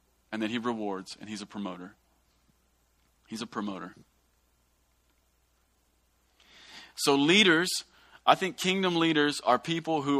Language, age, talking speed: English, 40-59, 120 wpm